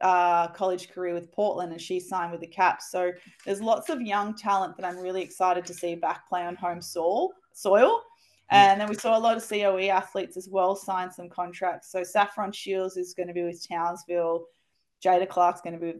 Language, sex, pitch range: English, female, 170-200 Hz